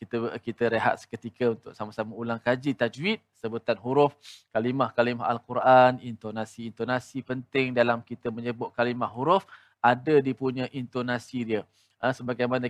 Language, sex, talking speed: Malayalam, male, 120 wpm